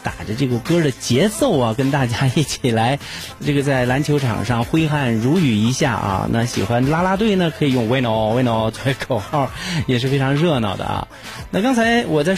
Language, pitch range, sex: Chinese, 115-155 Hz, male